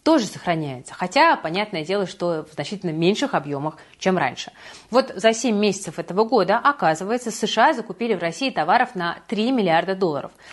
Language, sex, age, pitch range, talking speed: Russian, female, 30-49, 170-225 Hz, 160 wpm